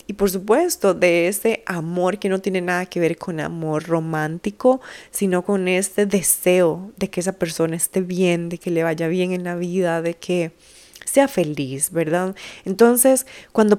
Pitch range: 170-205 Hz